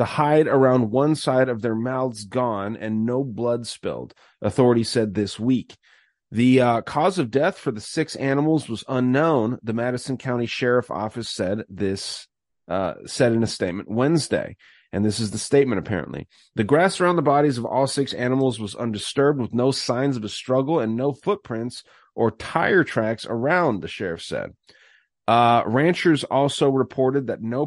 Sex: male